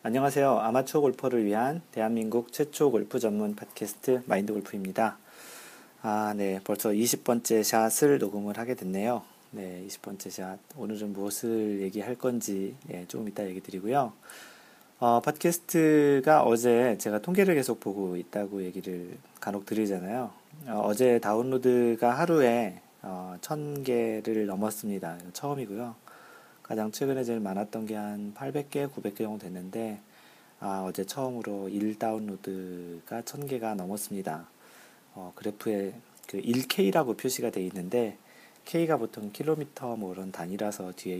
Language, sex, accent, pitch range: Korean, male, native, 100-130 Hz